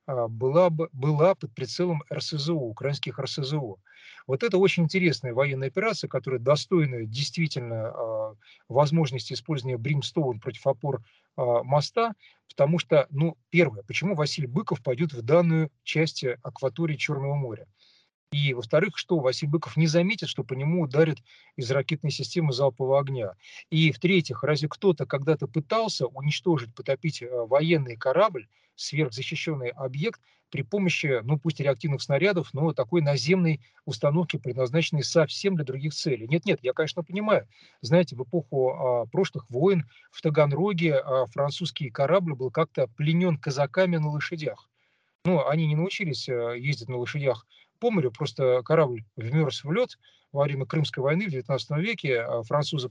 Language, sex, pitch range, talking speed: Russian, male, 130-165 Hz, 135 wpm